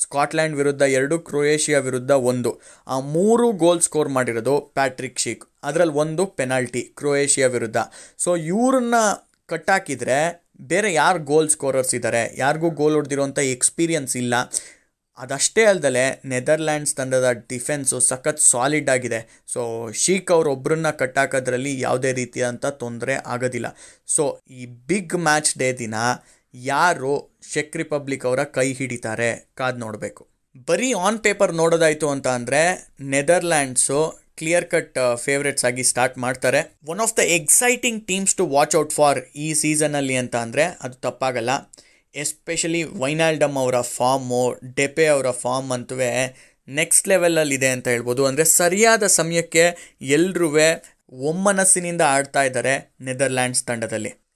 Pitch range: 125-165 Hz